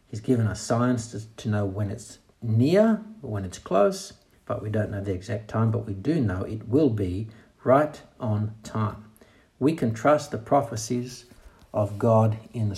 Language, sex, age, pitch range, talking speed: English, male, 60-79, 110-140 Hz, 190 wpm